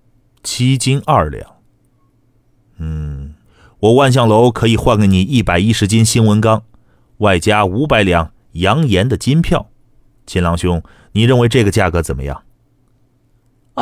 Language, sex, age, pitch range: Chinese, male, 30-49, 90-135 Hz